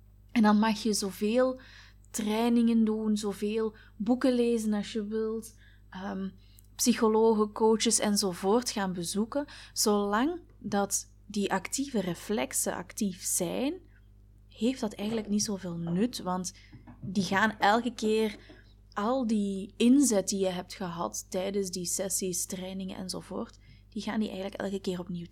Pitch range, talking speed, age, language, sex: 175-220 Hz, 135 wpm, 20-39, Dutch, female